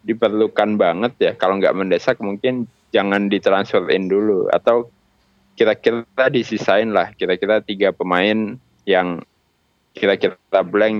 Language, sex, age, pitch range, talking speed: Indonesian, male, 20-39, 100-125 Hz, 110 wpm